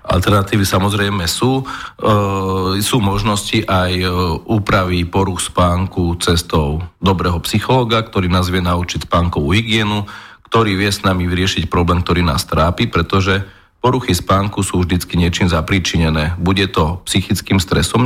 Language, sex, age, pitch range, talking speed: Slovak, male, 40-59, 85-100 Hz, 135 wpm